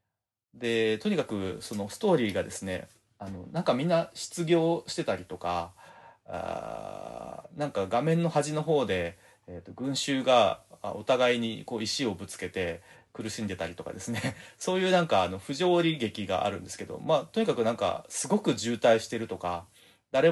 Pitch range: 100-140 Hz